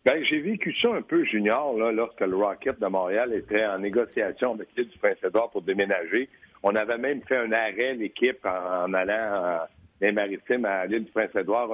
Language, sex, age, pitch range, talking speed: French, male, 60-79, 115-170 Hz, 195 wpm